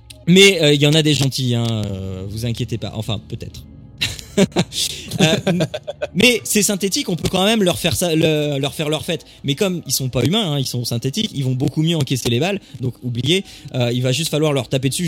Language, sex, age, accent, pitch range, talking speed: French, male, 20-39, French, 125-180 Hz, 235 wpm